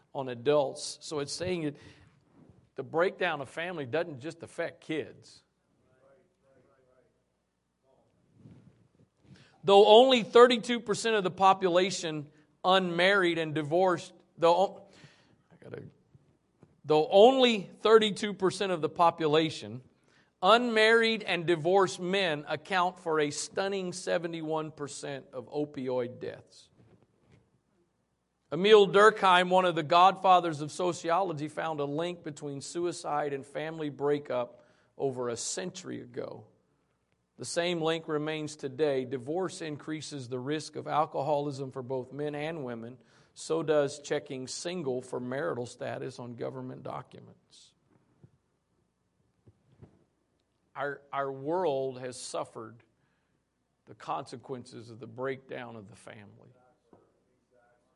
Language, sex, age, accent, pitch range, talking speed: English, male, 50-69, American, 135-180 Hz, 110 wpm